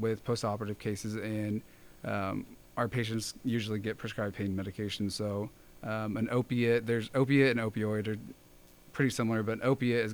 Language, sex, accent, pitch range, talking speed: English, male, American, 100-115 Hz, 155 wpm